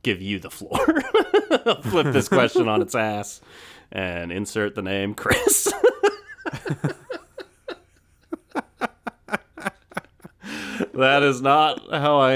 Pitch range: 100-150 Hz